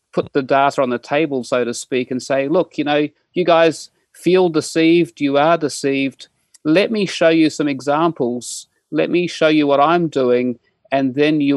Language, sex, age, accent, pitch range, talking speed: English, male, 30-49, Australian, 130-160 Hz, 190 wpm